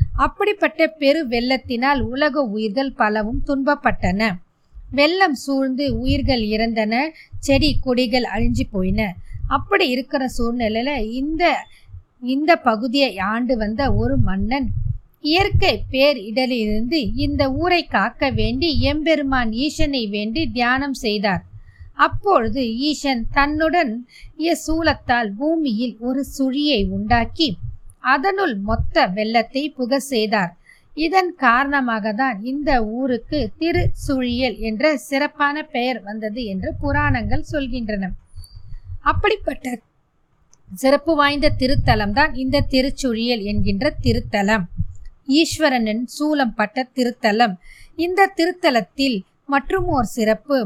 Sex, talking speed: female, 90 wpm